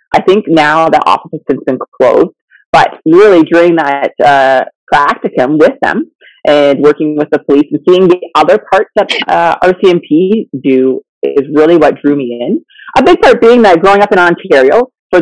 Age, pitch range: 30-49, 155-220 Hz